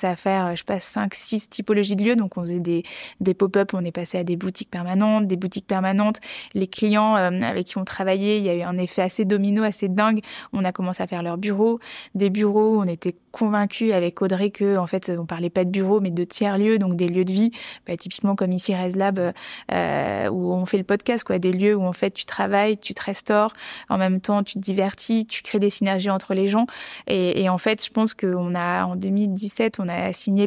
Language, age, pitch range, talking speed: French, 20-39, 185-210 Hz, 240 wpm